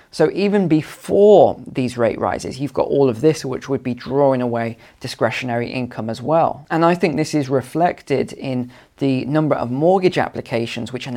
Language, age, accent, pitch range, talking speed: English, 20-39, British, 125-155 Hz, 185 wpm